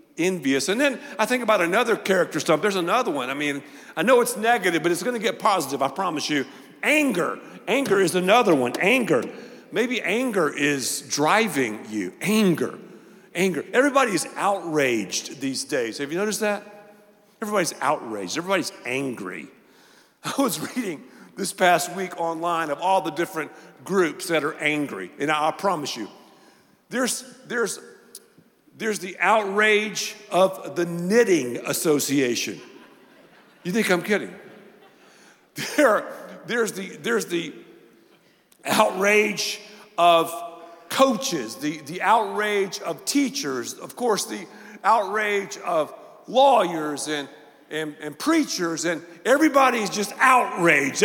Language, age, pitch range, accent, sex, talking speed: English, 50-69, 155-220 Hz, American, male, 135 wpm